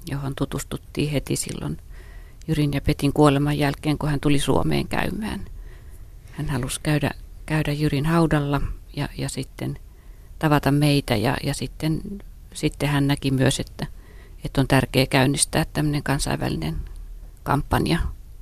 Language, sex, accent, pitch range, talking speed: Finnish, female, native, 130-160 Hz, 130 wpm